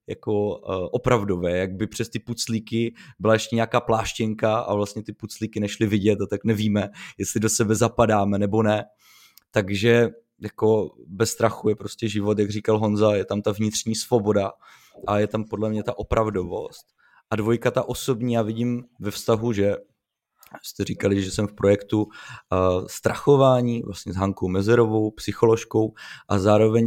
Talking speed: 160 wpm